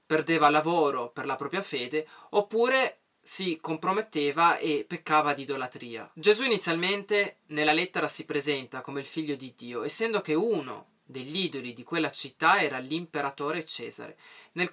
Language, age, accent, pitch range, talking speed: Italian, 20-39, native, 140-180 Hz, 145 wpm